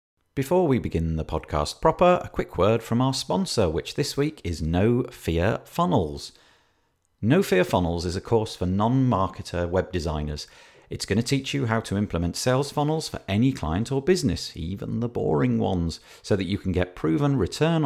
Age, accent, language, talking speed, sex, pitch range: 40-59, British, English, 185 wpm, male, 90-125 Hz